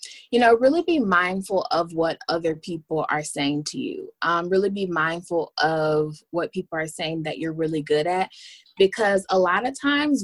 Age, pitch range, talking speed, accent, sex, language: 20-39, 155-185 Hz, 190 wpm, American, female, English